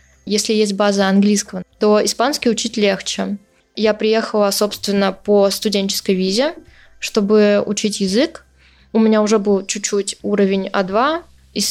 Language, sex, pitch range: Russian, female, 200-220 Hz